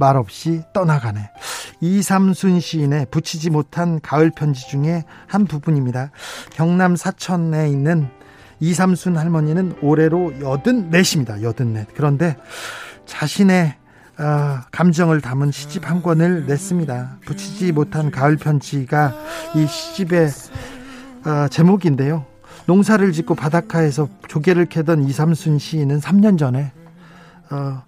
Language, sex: Korean, male